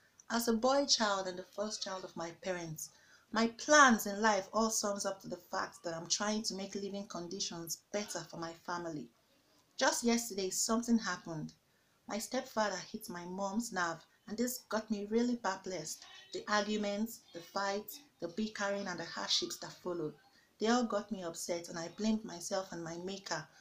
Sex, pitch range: female, 180-225 Hz